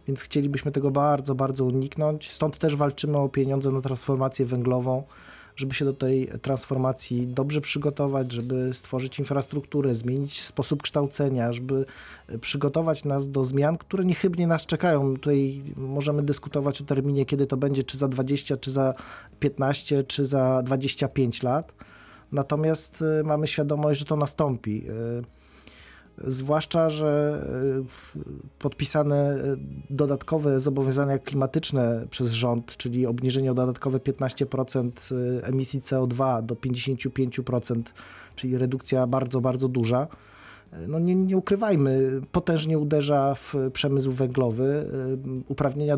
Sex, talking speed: male, 120 wpm